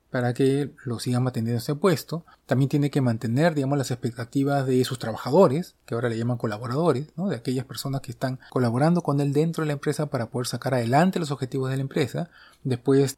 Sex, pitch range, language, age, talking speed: male, 125-150 Hz, Spanish, 30-49, 210 wpm